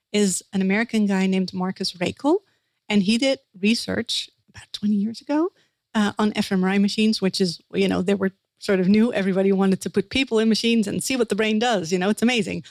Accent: American